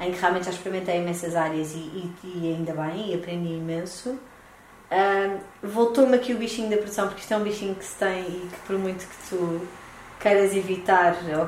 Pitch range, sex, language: 180-220 Hz, female, Portuguese